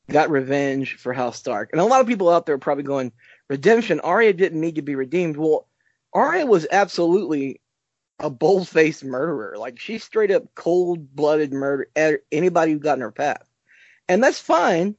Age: 20-39